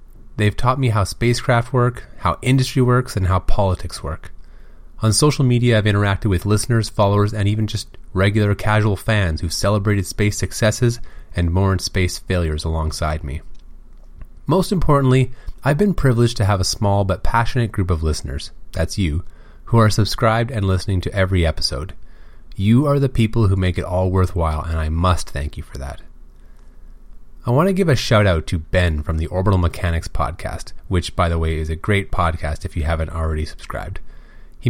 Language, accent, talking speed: English, American, 180 wpm